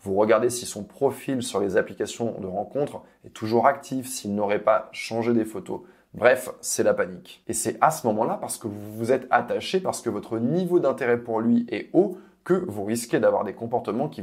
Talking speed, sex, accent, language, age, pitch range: 210 wpm, male, French, French, 20-39, 110-150 Hz